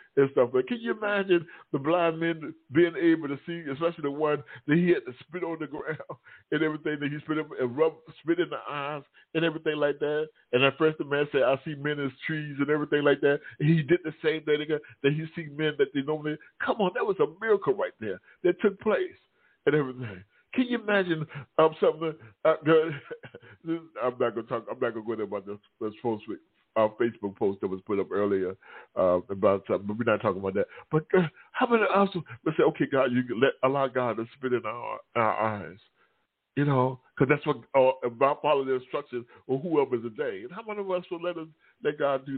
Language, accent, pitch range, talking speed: English, American, 140-180 Hz, 240 wpm